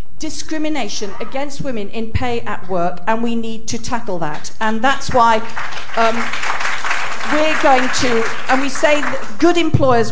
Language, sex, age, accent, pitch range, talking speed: English, female, 50-69, British, 195-270 Hz, 150 wpm